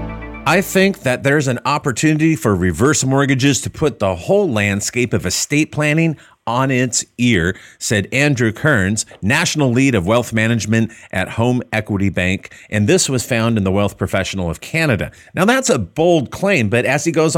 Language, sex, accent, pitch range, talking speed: English, male, American, 105-135 Hz, 175 wpm